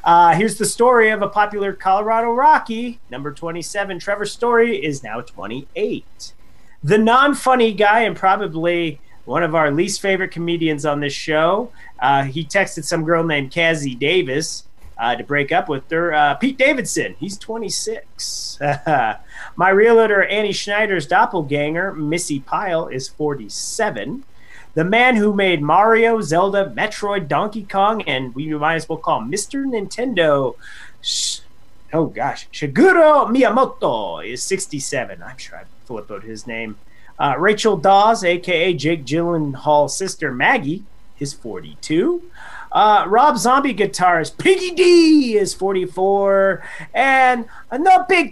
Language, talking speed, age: English, 140 wpm, 30-49